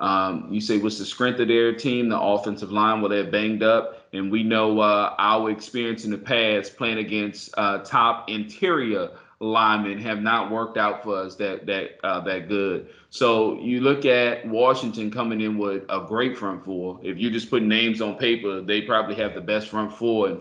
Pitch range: 105-120 Hz